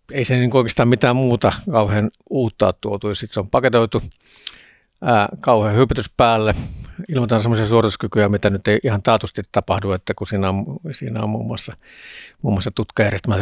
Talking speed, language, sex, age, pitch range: 165 wpm, Finnish, male, 60-79, 100-120 Hz